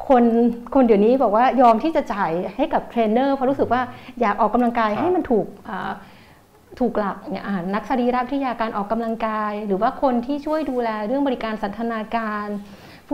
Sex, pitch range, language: female, 210-255 Hz, Thai